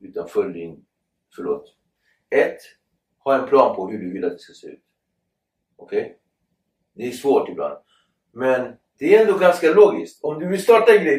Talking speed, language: 190 wpm, Swedish